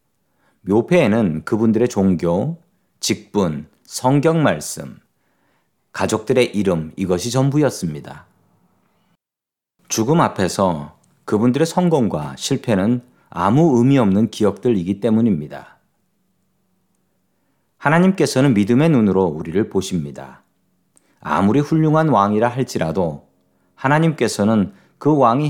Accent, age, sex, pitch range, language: native, 40-59, male, 95-135 Hz, Korean